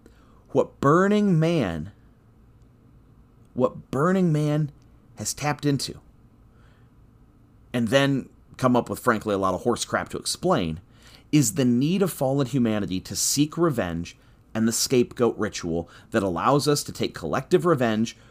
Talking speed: 140 wpm